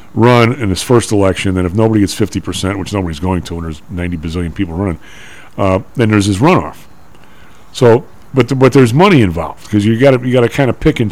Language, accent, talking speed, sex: English, American, 230 wpm, male